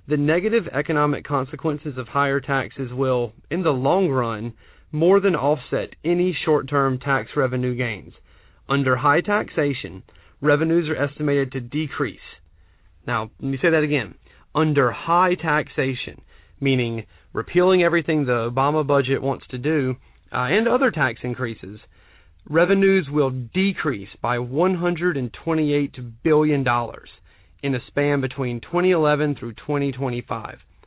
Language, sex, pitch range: English, male, 125-165 Hz